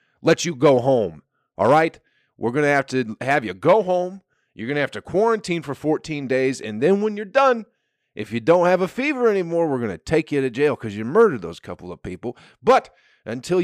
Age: 40-59